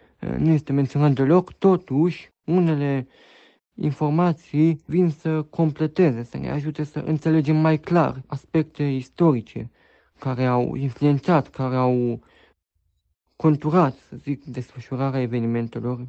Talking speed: 110 wpm